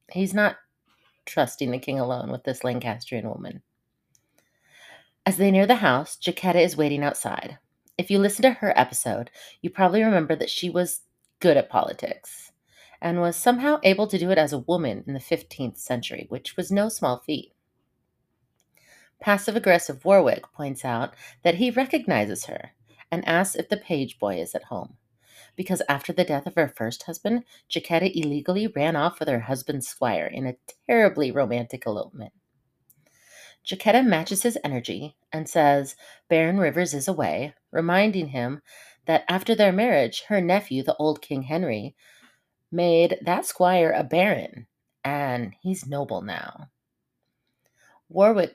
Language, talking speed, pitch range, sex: English, 155 wpm, 135-190 Hz, female